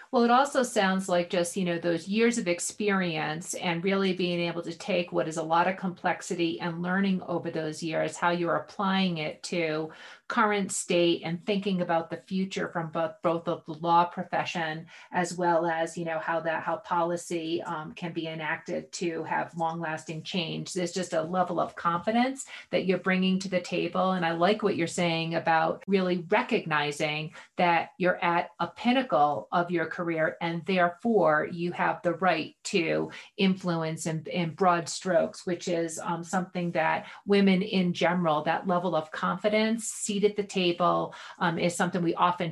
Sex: female